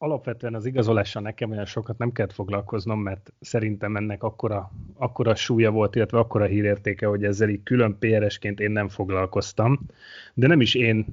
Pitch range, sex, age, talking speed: 105-115 Hz, male, 30-49, 160 wpm